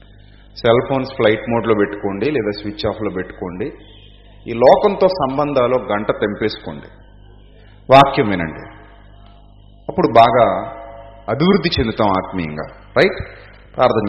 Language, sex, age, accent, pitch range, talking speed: Telugu, male, 30-49, native, 95-115 Hz, 105 wpm